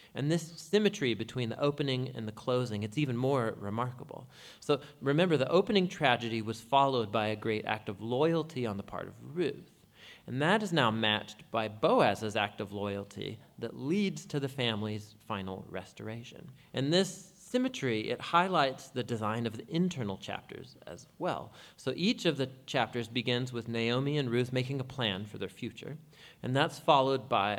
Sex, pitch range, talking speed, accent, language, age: male, 110-150 Hz, 175 wpm, American, English, 40-59